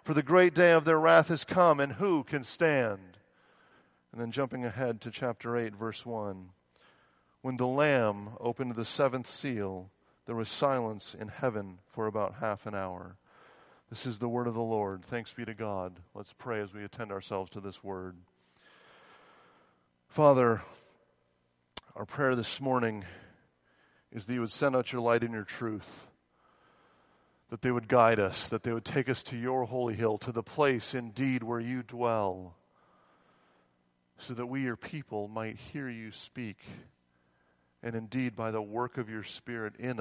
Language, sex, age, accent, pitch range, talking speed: English, male, 40-59, American, 95-125 Hz, 170 wpm